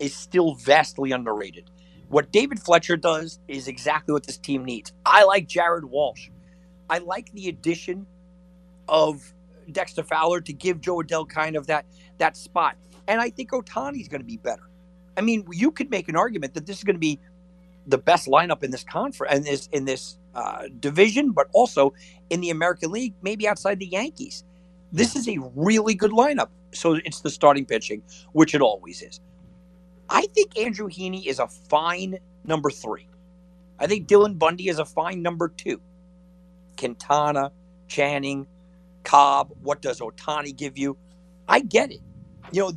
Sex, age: male, 50-69